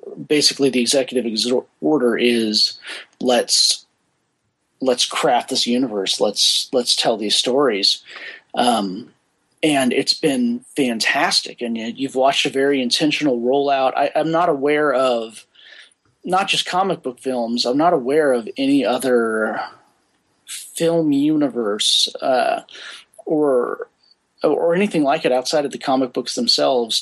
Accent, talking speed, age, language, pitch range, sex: American, 135 wpm, 30-49, English, 120-155 Hz, male